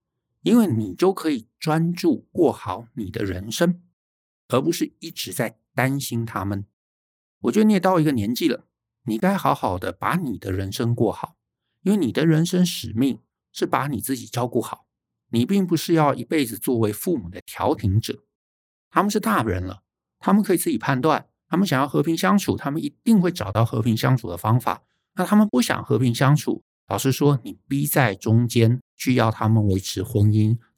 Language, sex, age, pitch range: Chinese, male, 50-69, 105-150 Hz